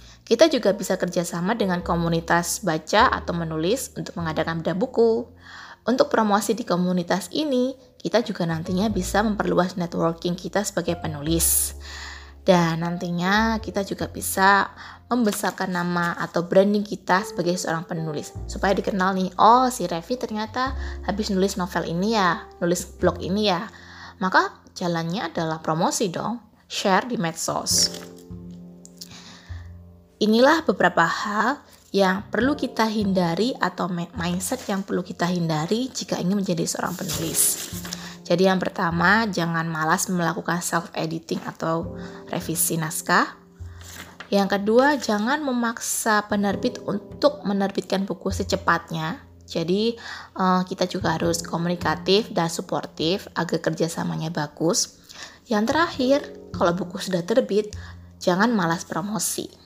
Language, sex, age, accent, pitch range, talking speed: Indonesian, female, 20-39, native, 165-210 Hz, 120 wpm